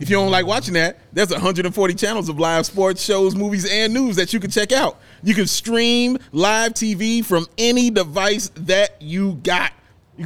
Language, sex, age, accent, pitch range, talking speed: English, male, 30-49, American, 175-225 Hz, 195 wpm